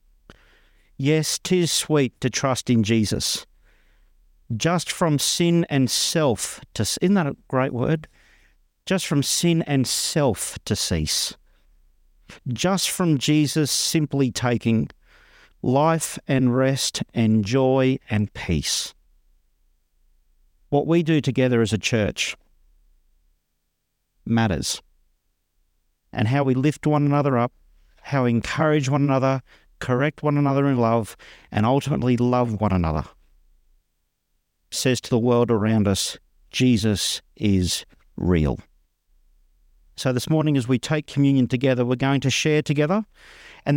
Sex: male